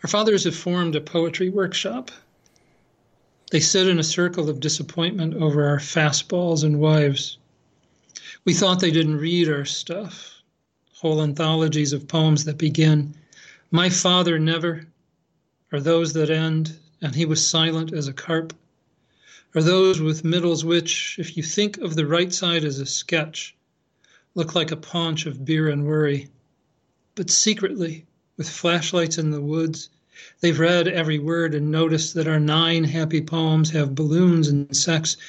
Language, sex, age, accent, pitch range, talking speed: English, male, 40-59, American, 150-170 Hz, 155 wpm